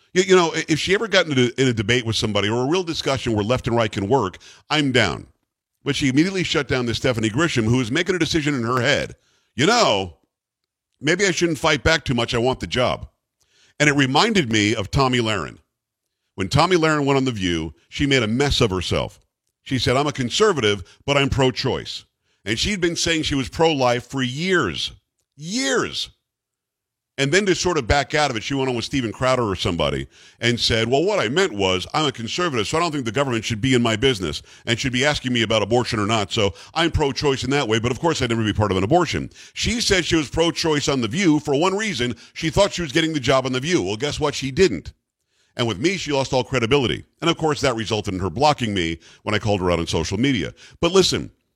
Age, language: 50-69, English